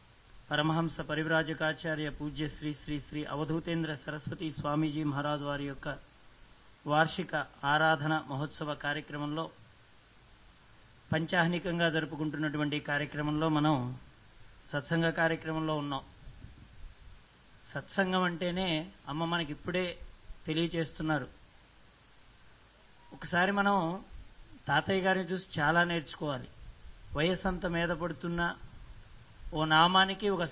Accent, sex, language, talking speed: Indian, male, English, 85 wpm